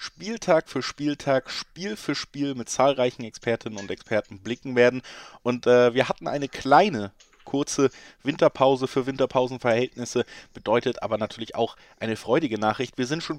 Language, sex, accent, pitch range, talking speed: German, male, German, 115-135 Hz, 150 wpm